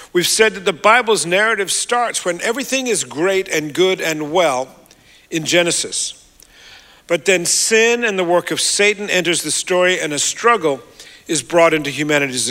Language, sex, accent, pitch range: English, male, American, 160-215 Hz